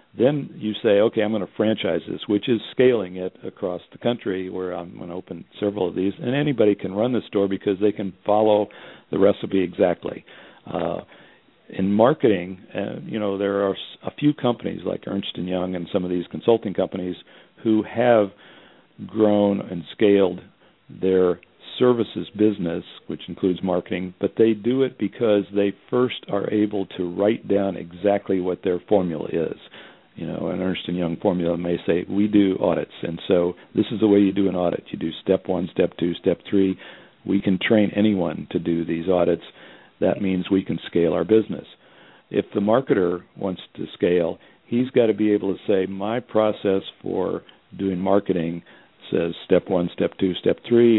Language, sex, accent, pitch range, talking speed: English, male, American, 90-105 Hz, 180 wpm